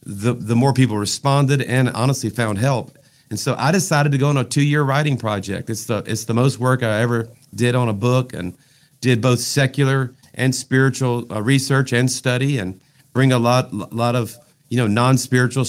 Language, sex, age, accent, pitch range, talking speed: English, male, 50-69, American, 110-135 Hz, 200 wpm